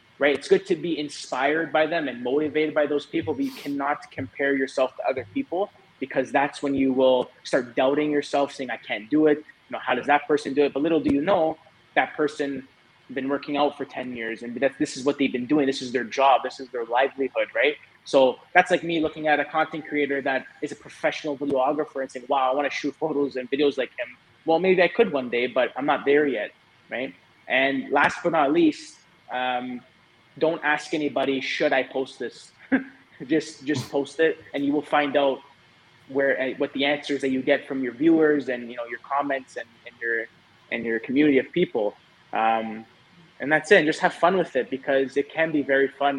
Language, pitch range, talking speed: English, 130-150 Hz, 220 wpm